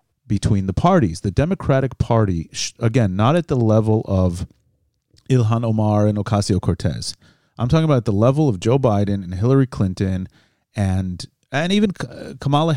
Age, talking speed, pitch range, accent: 30-49, 155 wpm, 105-135 Hz, American